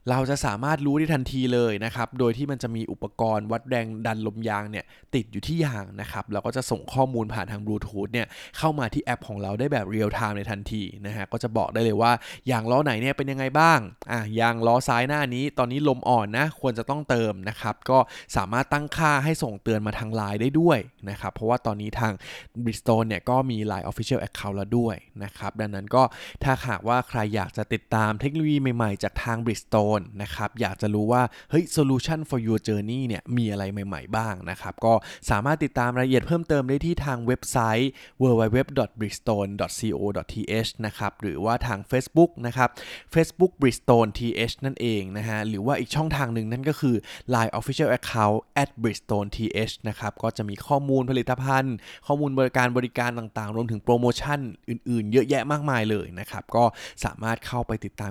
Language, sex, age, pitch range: Thai, male, 20-39, 105-130 Hz